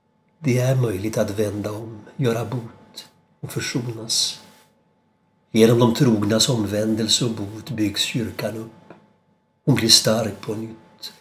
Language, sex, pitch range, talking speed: Swedish, male, 110-125 Hz, 130 wpm